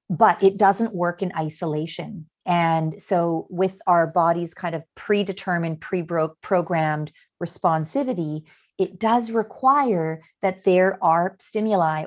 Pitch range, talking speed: 160-210 Hz, 115 wpm